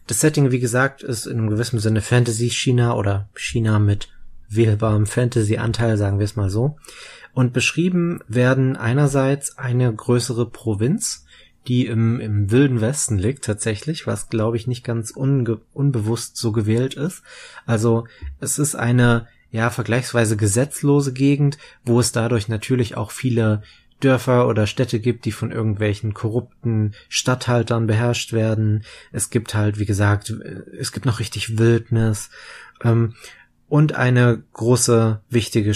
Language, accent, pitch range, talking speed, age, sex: German, German, 110-130 Hz, 140 wpm, 20-39, male